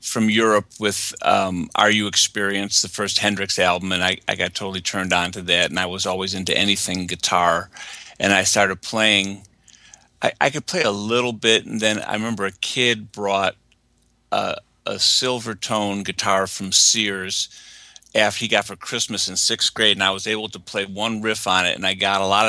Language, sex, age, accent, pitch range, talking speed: English, male, 50-69, American, 95-105 Hz, 200 wpm